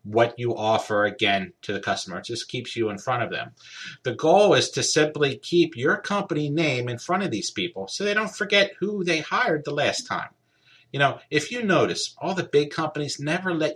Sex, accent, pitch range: male, American, 115-170 Hz